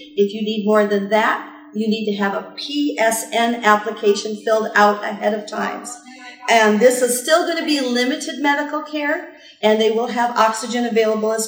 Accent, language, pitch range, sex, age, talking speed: American, English, 215-285 Hz, female, 40-59, 185 wpm